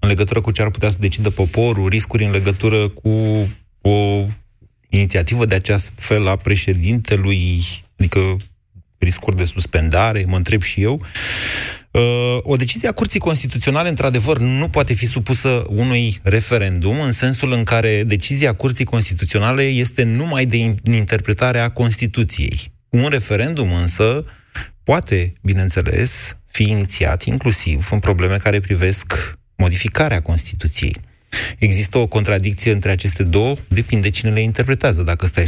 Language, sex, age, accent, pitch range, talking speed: Romanian, male, 30-49, native, 95-125 Hz, 135 wpm